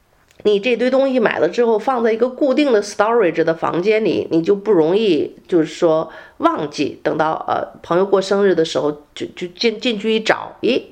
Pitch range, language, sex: 170-260 Hz, Chinese, female